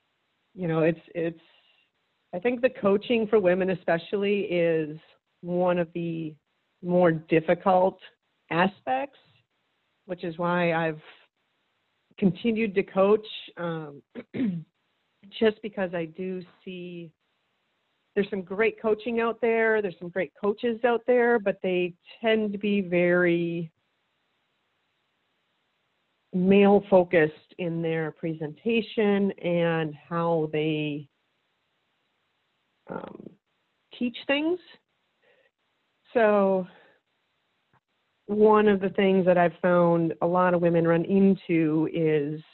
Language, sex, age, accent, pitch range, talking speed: English, female, 40-59, American, 165-205 Hz, 105 wpm